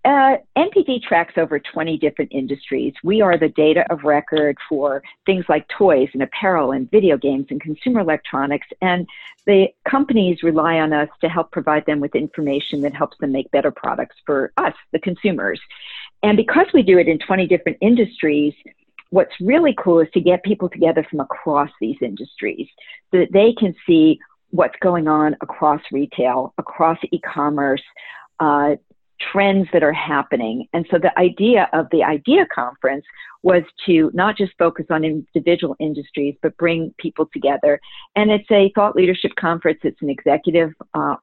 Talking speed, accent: 165 wpm, American